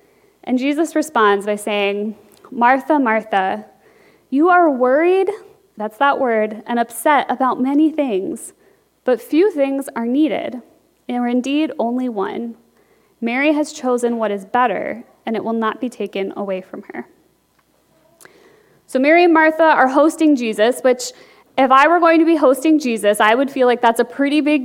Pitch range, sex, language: 235-305 Hz, female, English